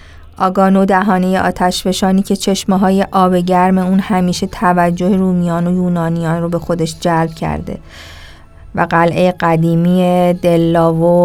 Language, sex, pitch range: Persian, female, 165-190 Hz